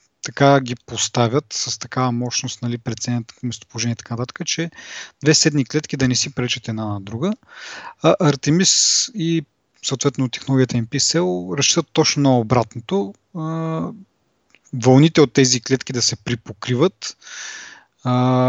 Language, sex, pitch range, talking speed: Bulgarian, male, 120-150 Hz, 125 wpm